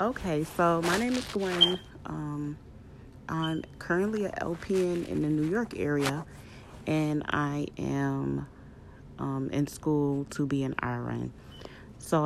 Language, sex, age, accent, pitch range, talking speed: English, female, 30-49, American, 130-155 Hz, 130 wpm